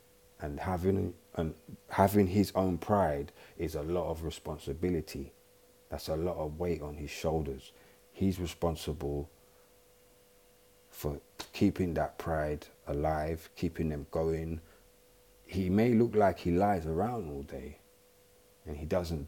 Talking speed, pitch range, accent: 130 wpm, 75-95 Hz, British